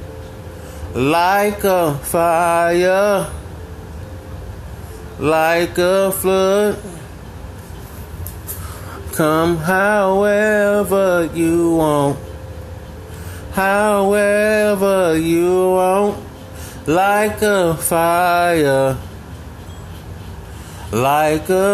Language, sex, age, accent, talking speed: English, male, 30-49, American, 45 wpm